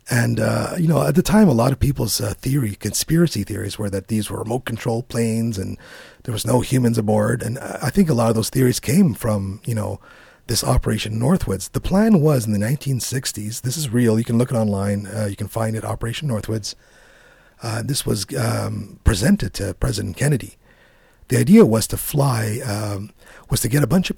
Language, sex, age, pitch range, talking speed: English, male, 40-59, 105-140 Hz, 210 wpm